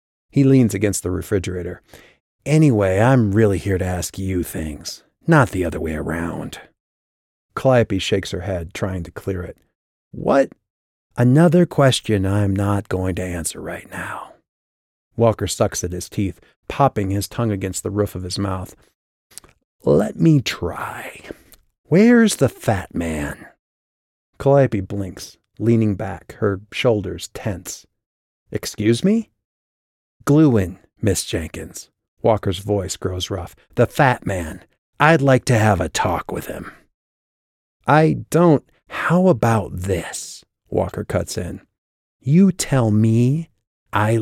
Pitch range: 90-120 Hz